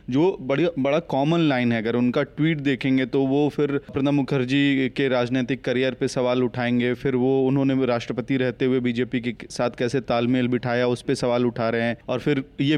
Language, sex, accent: Hindi, male, native